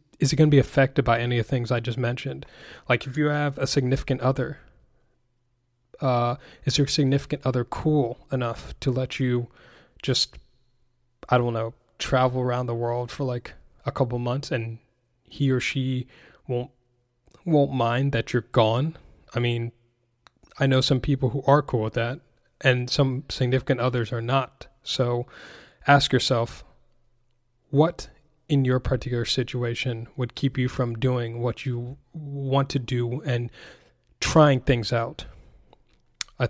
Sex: male